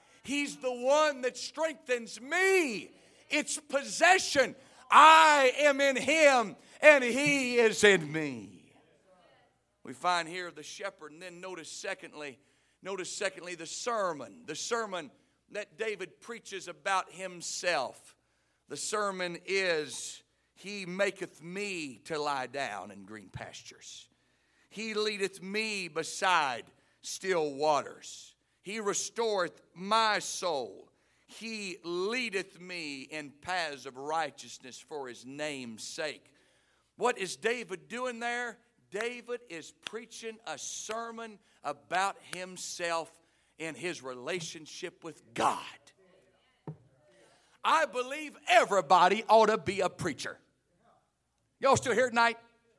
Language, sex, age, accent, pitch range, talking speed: English, male, 50-69, American, 170-250 Hz, 115 wpm